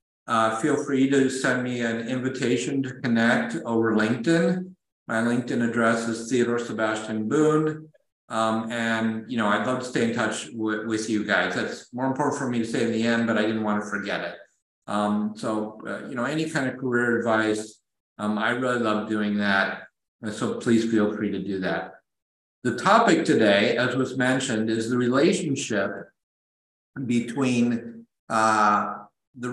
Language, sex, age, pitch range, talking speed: Hungarian, male, 50-69, 105-125 Hz, 175 wpm